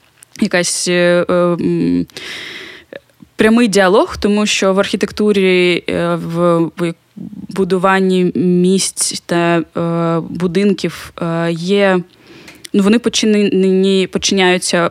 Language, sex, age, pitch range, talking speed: Ukrainian, female, 20-39, 175-205 Hz, 95 wpm